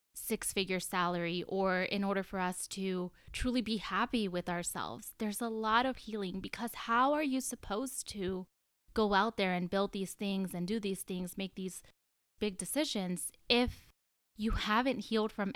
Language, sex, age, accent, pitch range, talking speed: English, female, 10-29, American, 185-235 Hz, 170 wpm